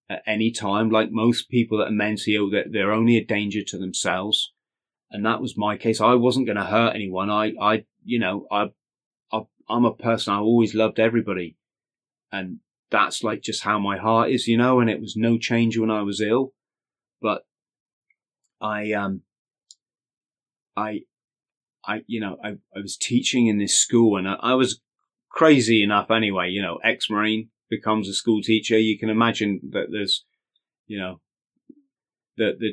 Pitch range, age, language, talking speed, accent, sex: 100-115 Hz, 30-49, English, 175 wpm, British, male